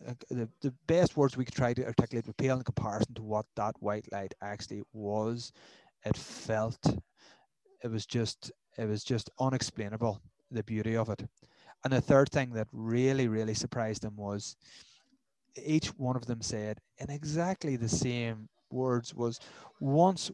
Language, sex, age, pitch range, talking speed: English, male, 30-49, 110-135 Hz, 160 wpm